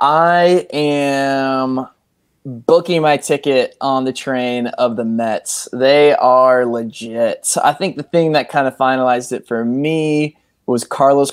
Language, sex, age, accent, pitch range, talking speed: English, male, 20-39, American, 120-140 Hz, 145 wpm